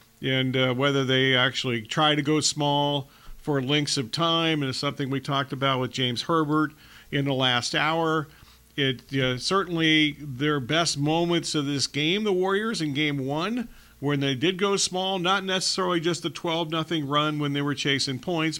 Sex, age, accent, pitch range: male, 40-59, American, 140-165 Hz